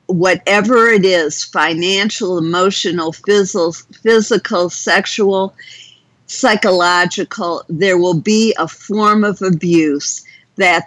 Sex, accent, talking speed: female, American, 95 wpm